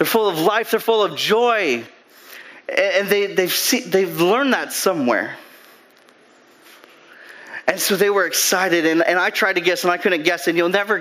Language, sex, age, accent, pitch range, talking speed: English, male, 30-49, American, 175-230 Hz, 185 wpm